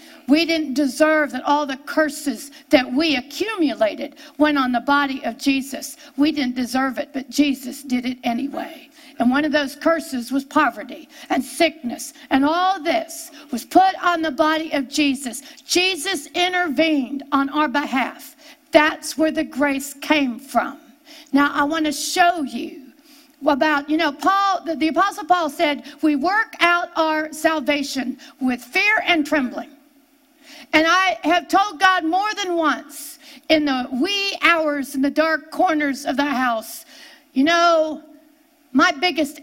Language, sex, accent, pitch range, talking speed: English, female, American, 280-325 Hz, 155 wpm